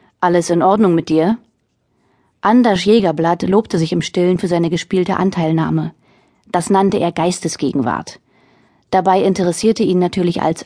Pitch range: 165-195 Hz